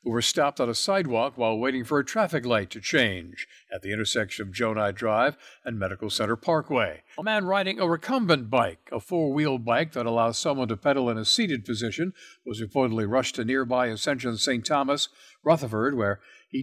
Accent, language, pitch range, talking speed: American, English, 120-165 Hz, 190 wpm